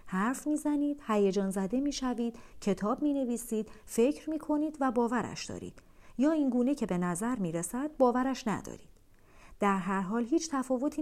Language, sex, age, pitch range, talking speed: Persian, female, 40-59, 185-245 Hz, 150 wpm